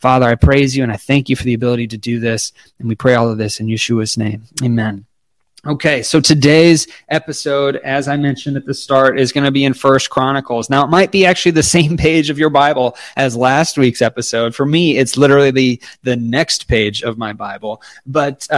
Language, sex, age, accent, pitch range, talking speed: English, male, 20-39, American, 120-155 Hz, 220 wpm